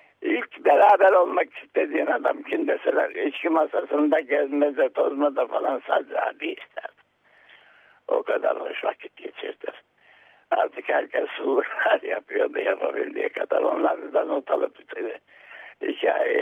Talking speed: 110 wpm